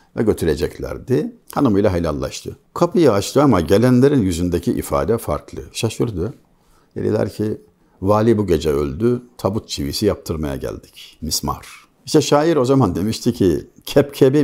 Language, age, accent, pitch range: Turkish, 60-79, native, 95-130 Hz